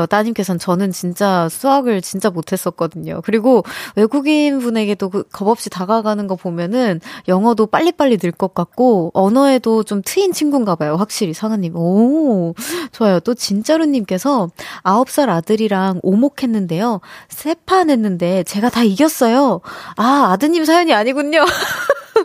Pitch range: 190-255 Hz